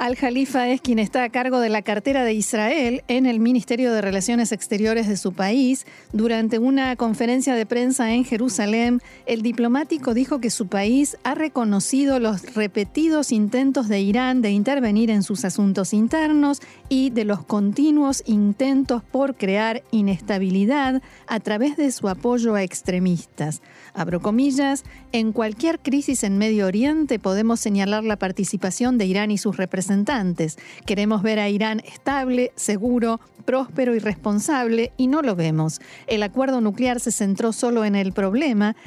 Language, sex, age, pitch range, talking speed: Spanish, female, 40-59, 205-255 Hz, 155 wpm